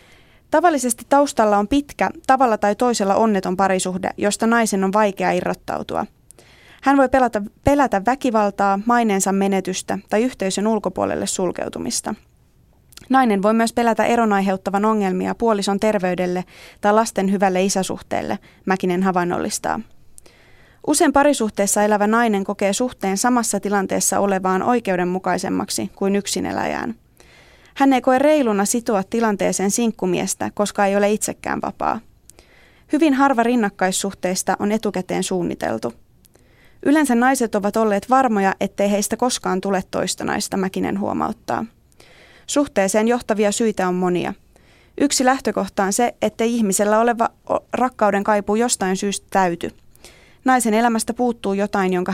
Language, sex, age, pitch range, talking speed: Finnish, female, 20-39, 195-240 Hz, 120 wpm